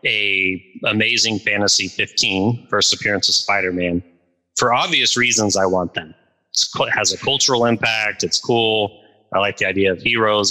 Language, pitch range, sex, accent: English, 100-125 Hz, male, American